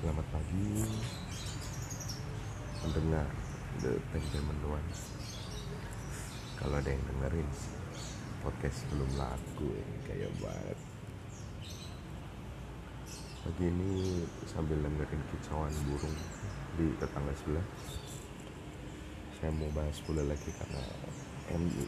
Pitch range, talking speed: 75-110 Hz, 85 wpm